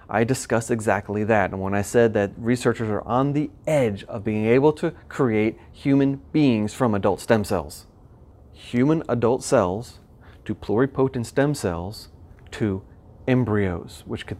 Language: English